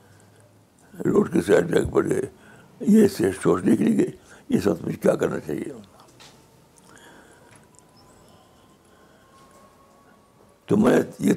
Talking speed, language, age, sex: 105 wpm, Urdu, 60-79, male